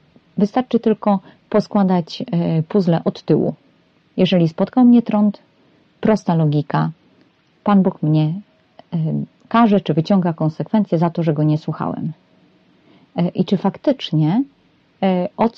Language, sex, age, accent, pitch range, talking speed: Polish, female, 30-49, native, 165-205 Hz, 110 wpm